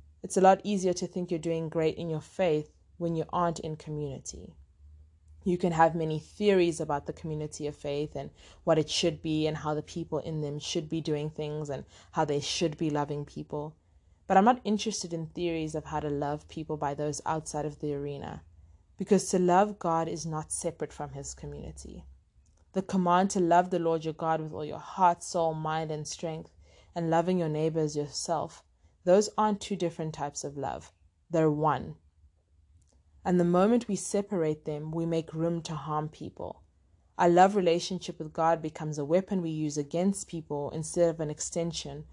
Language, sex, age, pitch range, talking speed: English, female, 20-39, 145-170 Hz, 190 wpm